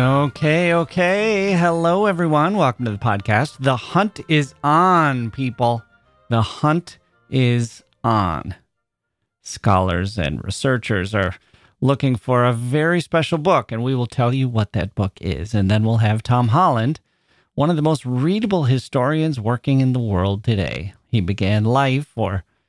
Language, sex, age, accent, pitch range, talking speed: English, male, 40-59, American, 105-140 Hz, 150 wpm